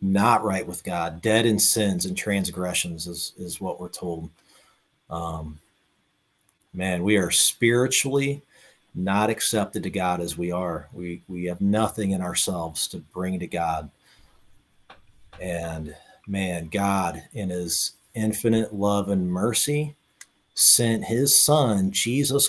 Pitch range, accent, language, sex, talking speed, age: 90-120 Hz, American, English, male, 130 wpm, 40-59